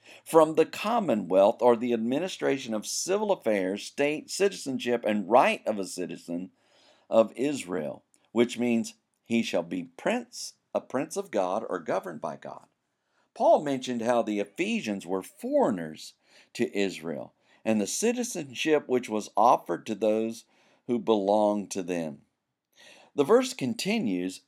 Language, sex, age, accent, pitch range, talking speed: English, male, 50-69, American, 110-160 Hz, 135 wpm